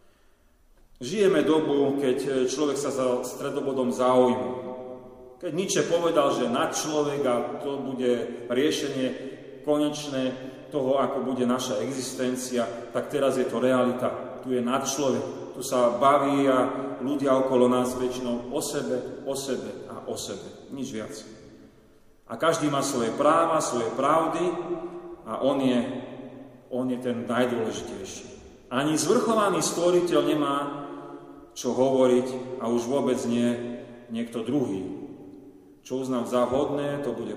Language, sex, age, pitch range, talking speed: Slovak, male, 40-59, 125-140 Hz, 130 wpm